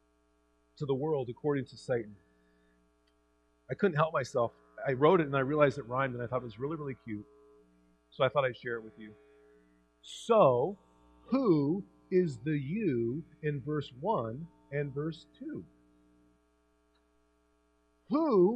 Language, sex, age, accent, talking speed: English, male, 40-59, American, 150 wpm